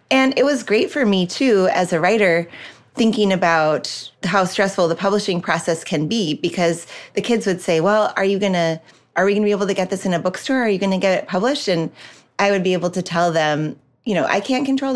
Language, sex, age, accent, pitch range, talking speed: English, female, 30-49, American, 160-195 Hz, 235 wpm